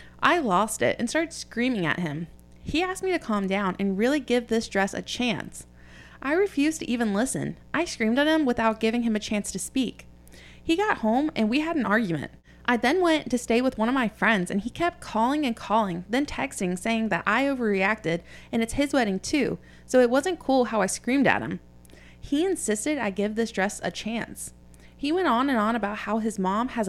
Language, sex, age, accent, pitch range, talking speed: English, female, 20-39, American, 190-250 Hz, 220 wpm